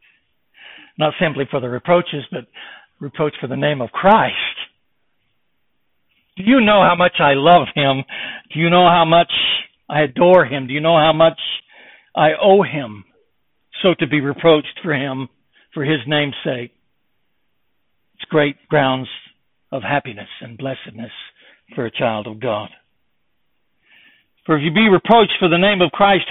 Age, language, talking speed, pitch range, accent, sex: 60-79, English, 155 wpm, 155-210 Hz, American, male